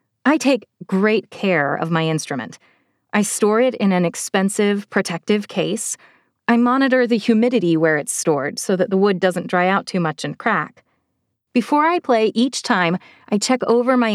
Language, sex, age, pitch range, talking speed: English, female, 30-49, 180-235 Hz, 180 wpm